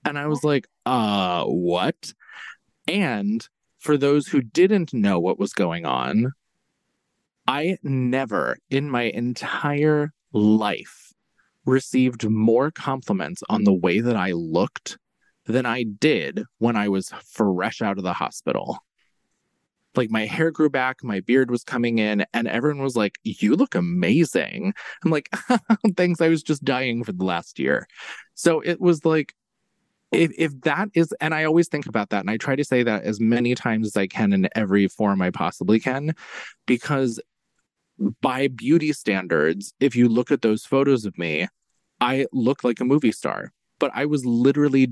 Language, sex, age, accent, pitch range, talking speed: English, male, 20-39, American, 110-155 Hz, 165 wpm